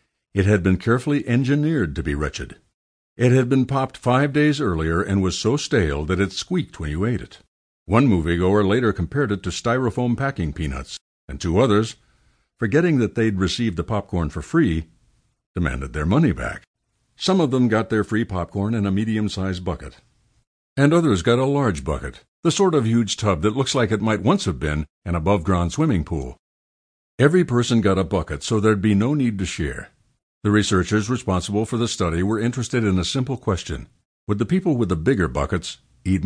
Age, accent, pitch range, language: 60-79, American, 90-125 Hz, English